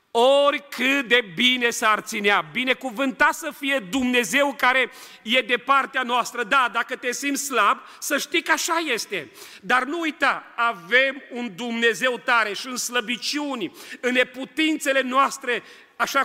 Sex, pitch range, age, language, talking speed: male, 200-260 Hz, 40-59, Romanian, 140 wpm